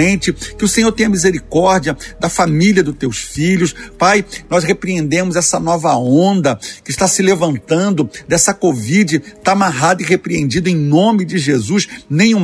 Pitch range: 150-185 Hz